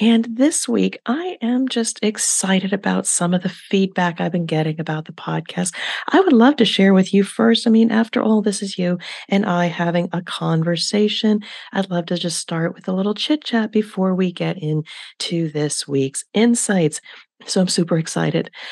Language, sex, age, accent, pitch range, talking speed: English, female, 40-59, American, 155-205 Hz, 190 wpm